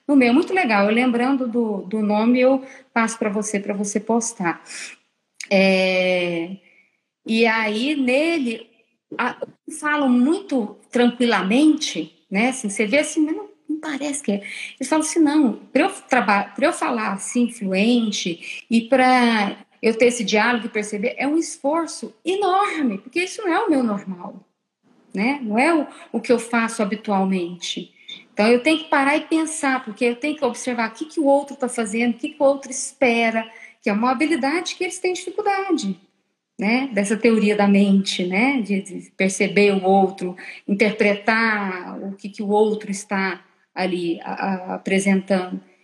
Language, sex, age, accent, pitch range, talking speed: Portuguese, female, 40-59, Brazilian, 200-275 Hz, 160 wpm